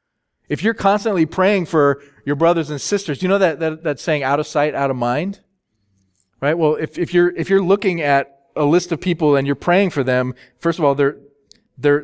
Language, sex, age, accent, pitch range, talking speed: English, male, 40-59, American, 125-185 Hz, 220 wpm